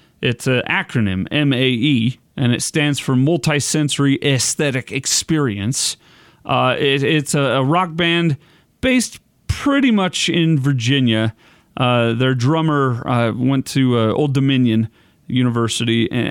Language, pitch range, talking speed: English, 130-160 Hz, 125 wpm